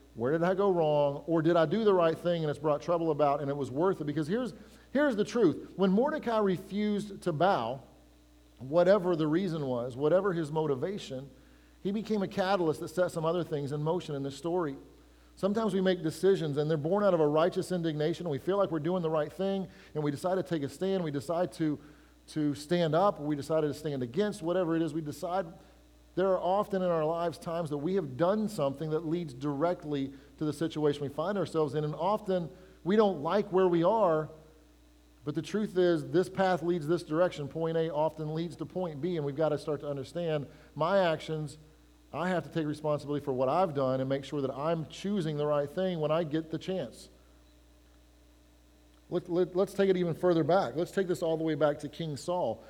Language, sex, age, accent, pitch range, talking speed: English, male, 40-59, American, 145-185 Hz, 215 wpm